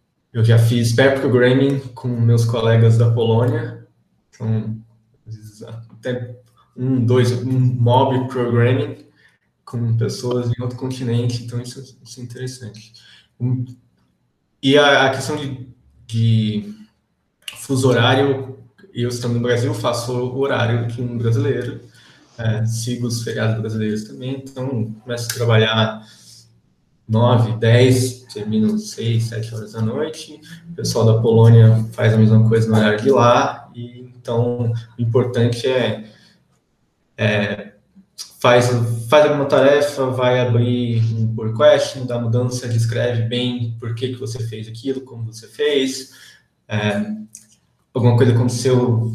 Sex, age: male, 20-39